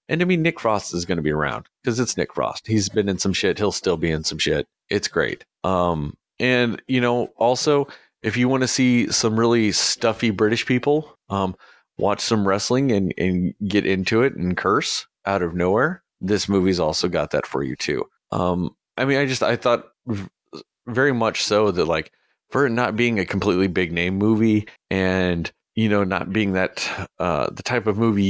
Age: 30-49